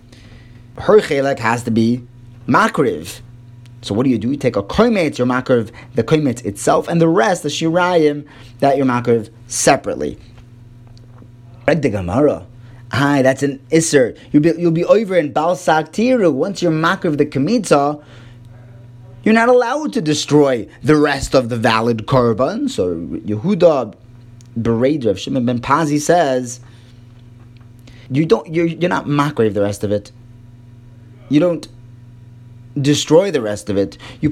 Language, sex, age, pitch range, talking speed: English, male, 30-49, 120-150 Hz, 145 wpm